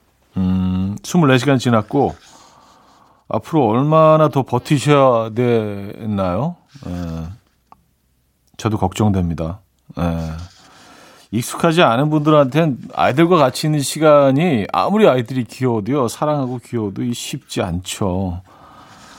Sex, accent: male, native